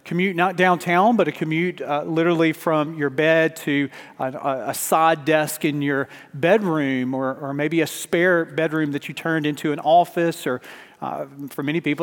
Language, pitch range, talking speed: English, 150-185 Hz, 180 wpm